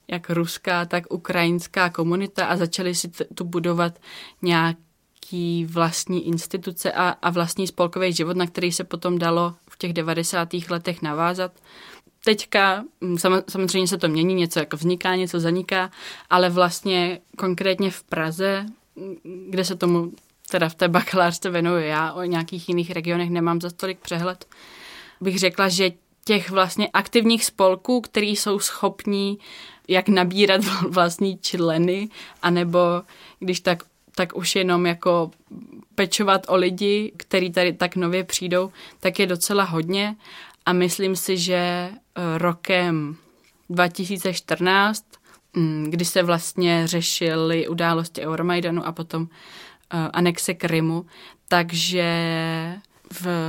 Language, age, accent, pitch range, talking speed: Czech, 20-39, native, 170-190 Hz, 125 wpm